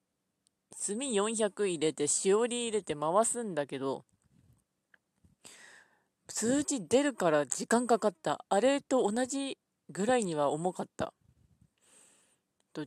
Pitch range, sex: 170-245 Hz, female